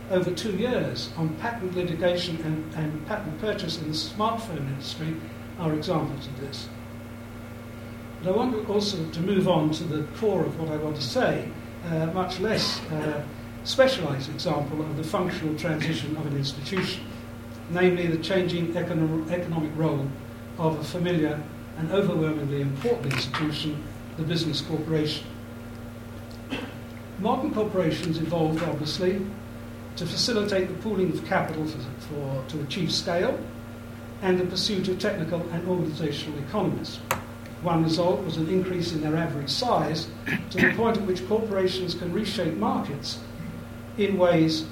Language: English